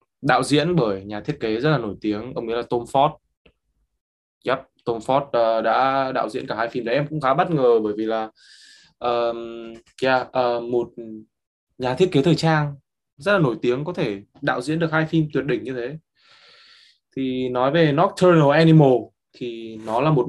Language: Vietnamese